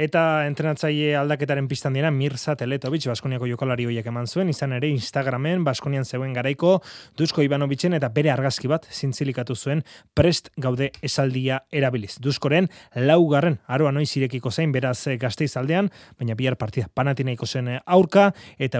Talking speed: 145 wpm